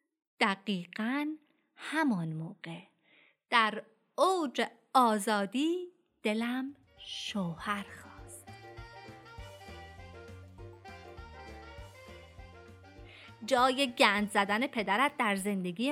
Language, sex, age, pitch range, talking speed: Persian, female, 30-49, 190-285 Hz, 55 wpm